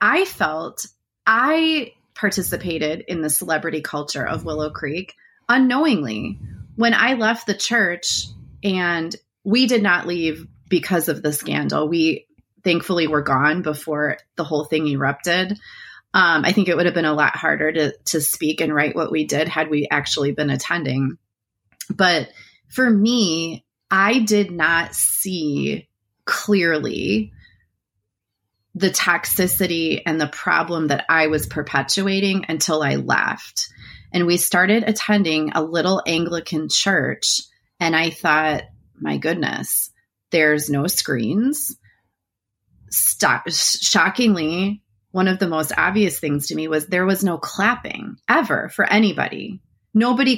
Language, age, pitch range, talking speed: English, 20-39, 150-195 Hz, 135 wpm